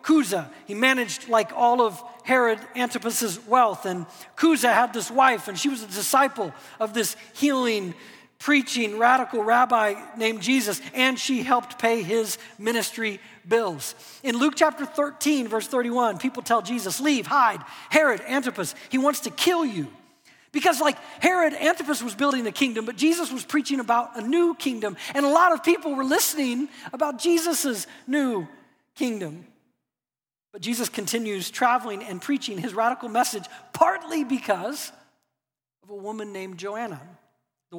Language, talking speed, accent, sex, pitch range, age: English, 150 wpm, American, male, 205-270 Hz, 40-59